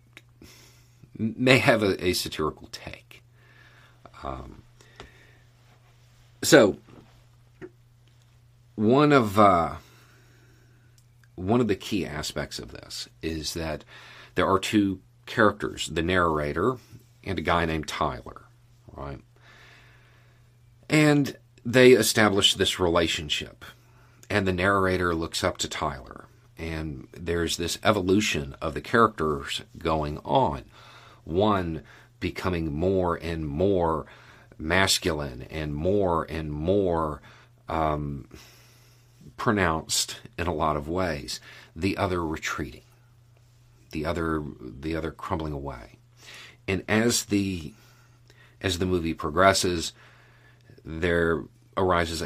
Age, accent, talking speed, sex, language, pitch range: 40-59, American, 100 wpm, male, English, 85-120 Hz